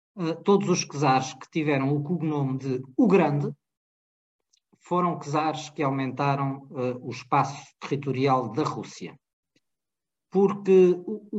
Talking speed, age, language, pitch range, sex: 110 wpm, 50-69, Portuguese, 135-175 Hz, male